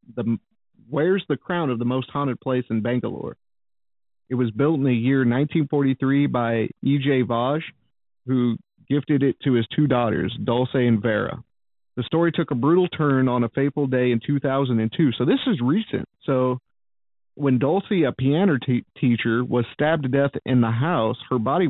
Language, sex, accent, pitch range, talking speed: English, male, American, 120-140 Hz, 170 wpm